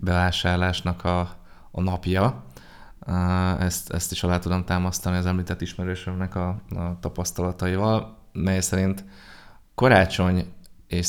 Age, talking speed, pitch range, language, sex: 20-39, 110 wpm, 85-95 Hz, Hungarian, male